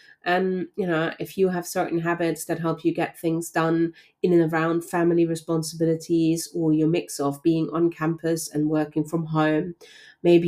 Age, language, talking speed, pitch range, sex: 30-49, English, 180 wpm, 160-190 Hz, female